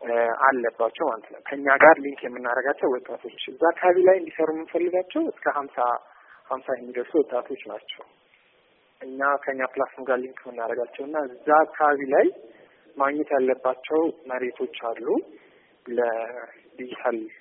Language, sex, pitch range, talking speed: Amharic, male, 125-160 Hz, 105 wpm